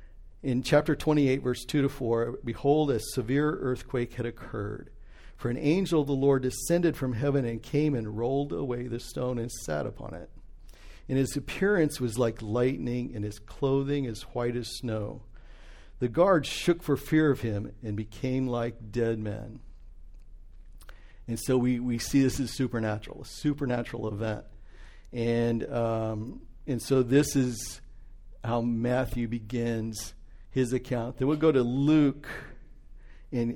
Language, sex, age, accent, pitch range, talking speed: English, male, 50-69, American, 115-140 Hz, 155 wpm